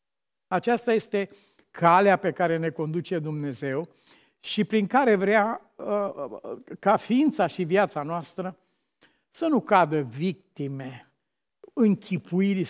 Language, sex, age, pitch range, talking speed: Romanian, male, 60-79, 150-195 Hz, 105 wpm